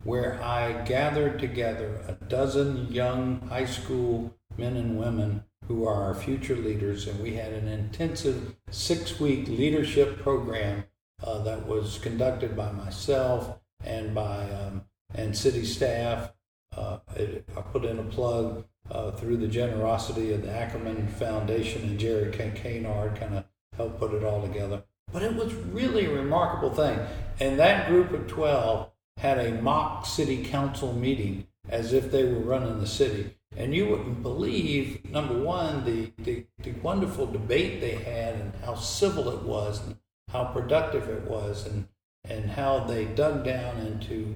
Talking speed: 155 wpm